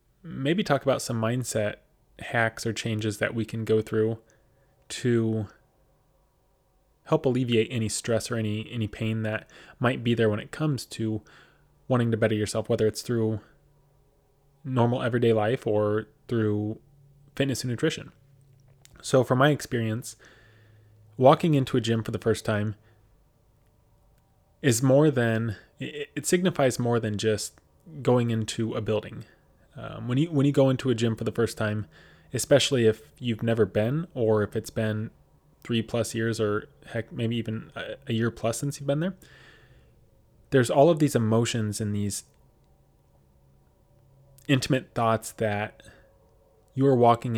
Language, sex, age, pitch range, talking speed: English, male, 20-39, 110-135 Hz, 150 wpm